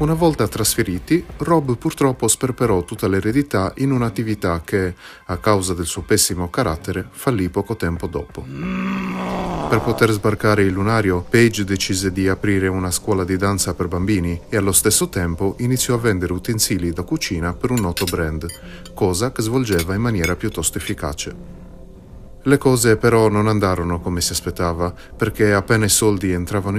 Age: 30-49